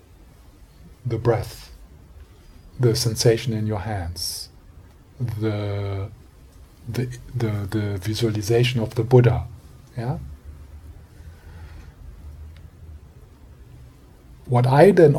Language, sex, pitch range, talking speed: English, male, 95-130 Hz, 75 wpm